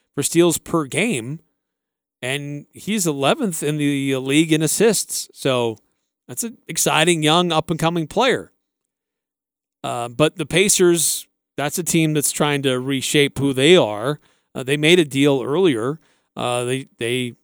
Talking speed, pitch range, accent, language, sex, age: 145 wpm, 135-170 Hz, American, English, male, 40-59